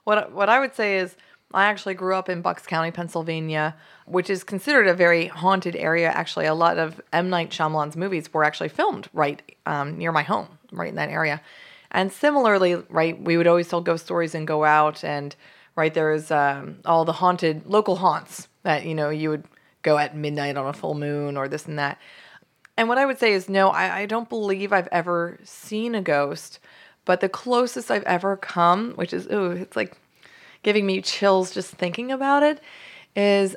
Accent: American